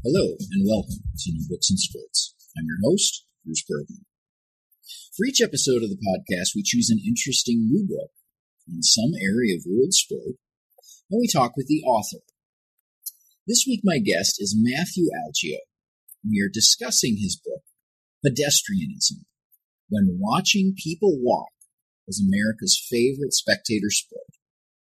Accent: American